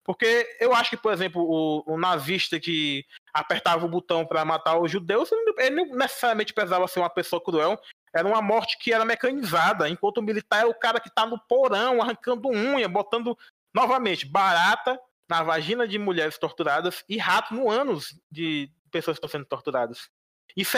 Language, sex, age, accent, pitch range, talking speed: Portuguese, male, 20-39, Brazilian, 160-230 Hz, 180 wpm